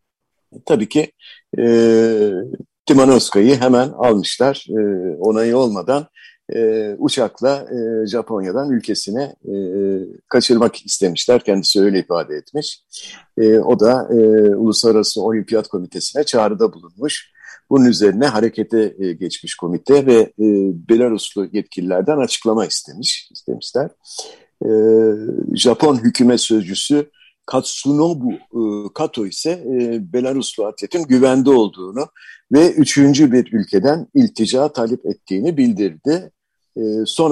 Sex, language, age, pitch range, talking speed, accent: male, Turkish, 50-69, 110-140 Hz, 105 wpm, native